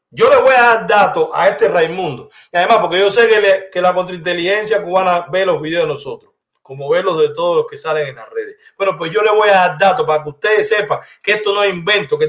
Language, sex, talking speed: Spanish, male, 265 wpm